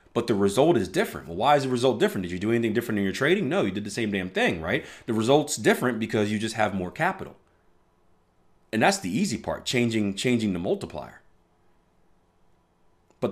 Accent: American